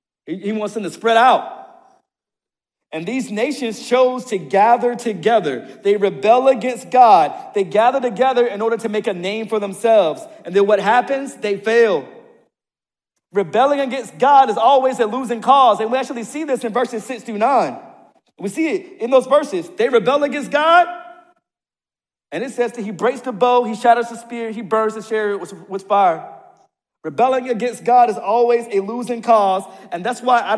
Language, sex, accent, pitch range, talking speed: English, male, American, 220-260 Hz, 180 wpm